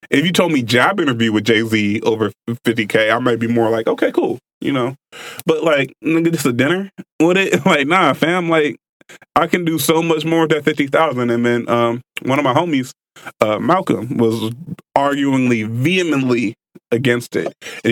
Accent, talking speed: American, 190 wpm